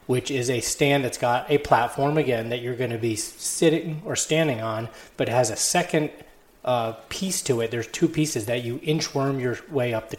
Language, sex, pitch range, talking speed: English, male, 115-145 Hz, 220 wpm